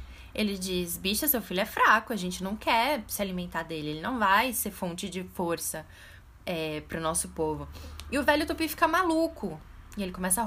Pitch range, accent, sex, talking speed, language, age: 165-230 Hz, Brazilian, female, 195 wpm, Portuguese, 10-29